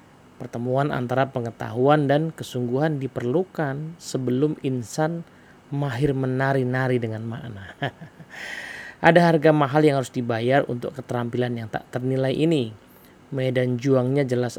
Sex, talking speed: male, 110 wpm